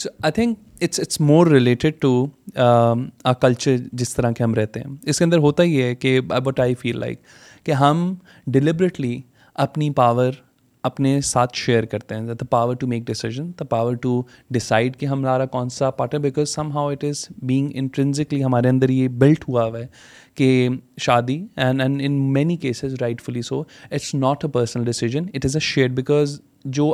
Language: Urdu